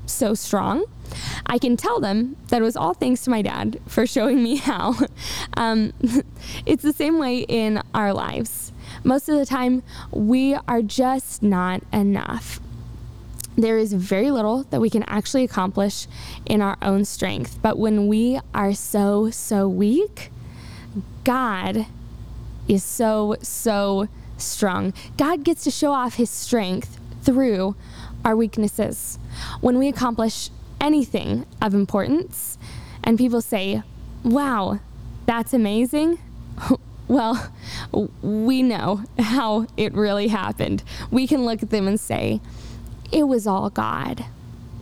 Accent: American